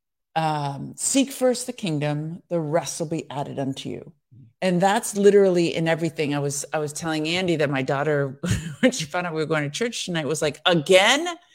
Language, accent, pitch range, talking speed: English, American, 155-205 Hz, 205 wpm